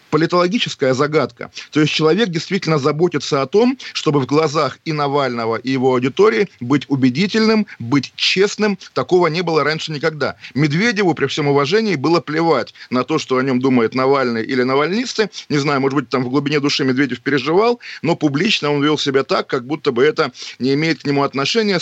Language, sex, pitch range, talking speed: Russian, male, 135-165 Hz, 180 wpm